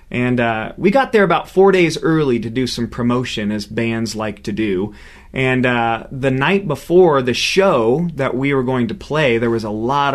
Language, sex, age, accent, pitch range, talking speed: English, male, 30-49, American, 115-150 Hz, 205 wpm